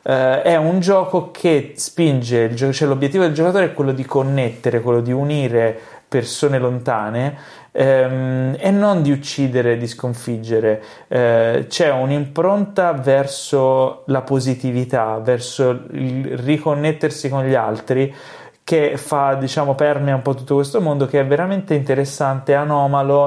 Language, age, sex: Italian, 30-49, male